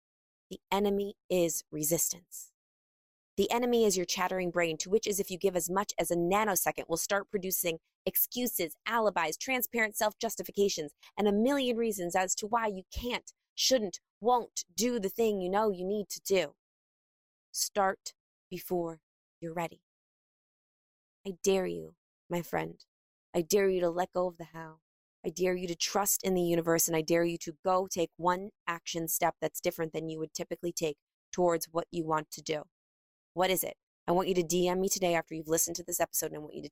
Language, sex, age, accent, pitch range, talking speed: English, female, 20-39, American, 160-205 Hz, 195 wpm